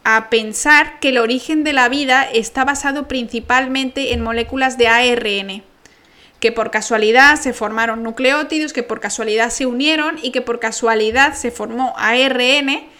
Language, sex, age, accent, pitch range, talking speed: Spanish, female, 10-29, Spanish, 220-260 Hz, 150 wpm